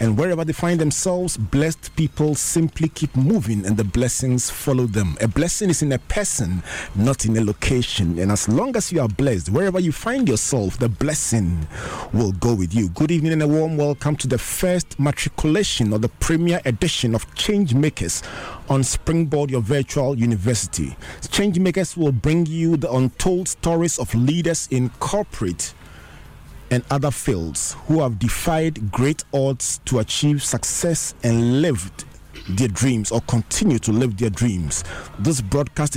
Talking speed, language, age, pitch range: 160 wpm, English, 40-59, 115-155 Hz